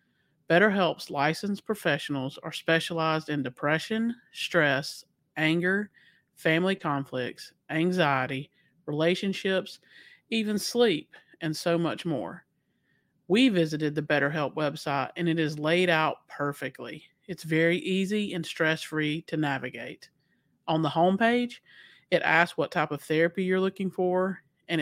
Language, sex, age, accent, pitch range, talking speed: English, male, 40-59, American, 150-180 Hz, 120 wpm